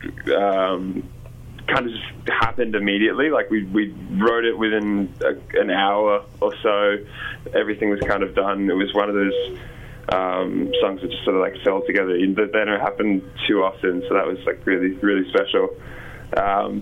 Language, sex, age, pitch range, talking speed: English, male, 10-29, 100-120 Hz, 180 wpm